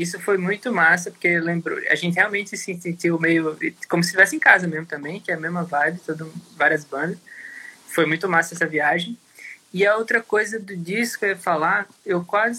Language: Portuguese